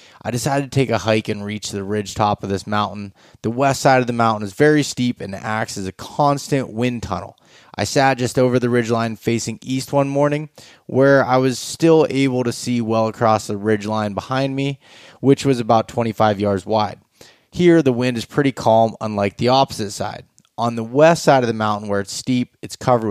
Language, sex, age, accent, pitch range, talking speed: English, male, 20-39, American, 105-130 Hz, 210 wpm